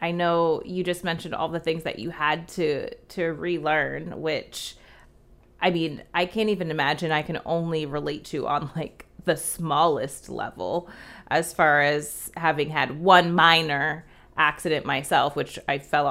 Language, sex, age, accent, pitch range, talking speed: English, female, 20-39, American, 155-180 Hz, 160 wpm